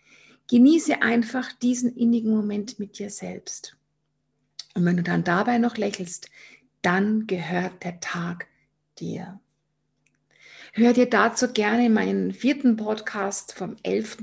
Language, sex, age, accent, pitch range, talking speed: German, female, 50-69, German, 180-225 Hz, 120 wpm